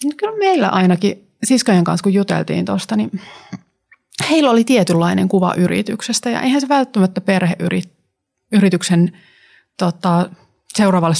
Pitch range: 170-195 Hz